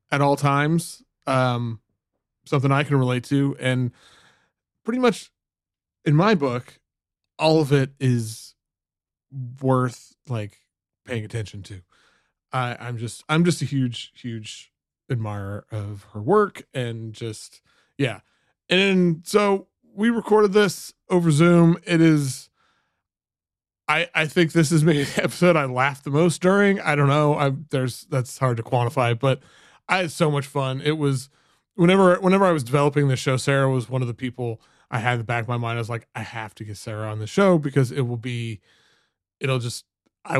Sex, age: male, 20-39